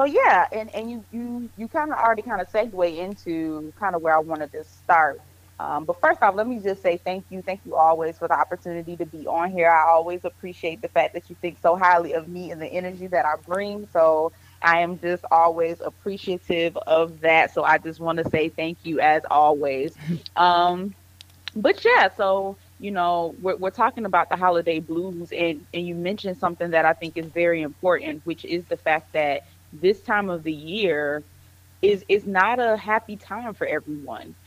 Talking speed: 205 wpm